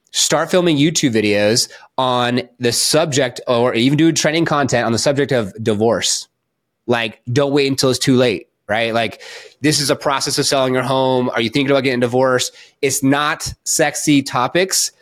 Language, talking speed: English, 180 wpm